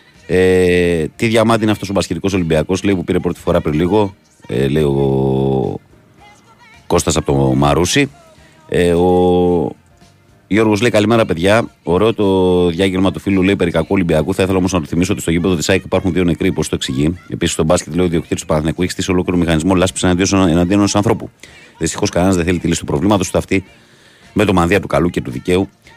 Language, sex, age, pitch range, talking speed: Greek, male, 30-49, 85-100 Hz, 190 wpm